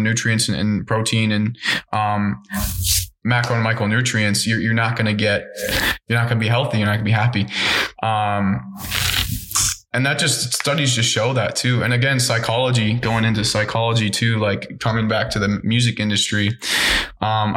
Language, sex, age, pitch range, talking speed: English, male, 20-39, 105-120 Hz, 165 wpm